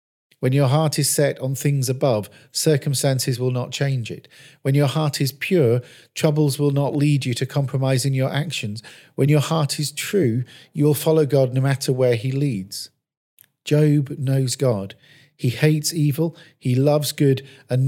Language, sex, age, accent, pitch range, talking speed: English, male, 40-59, British, 130-150 Hz, 170 wpm